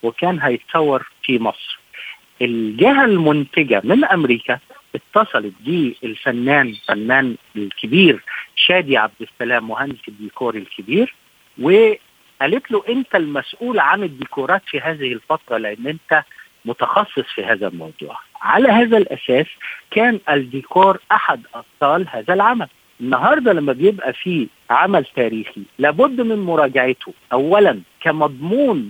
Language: Arabic